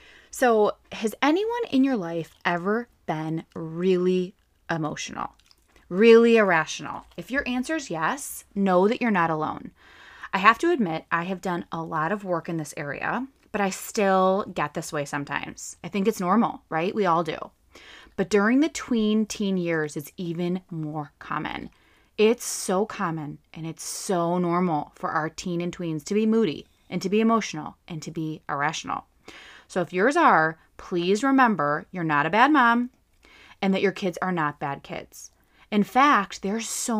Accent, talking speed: American, 175 wpm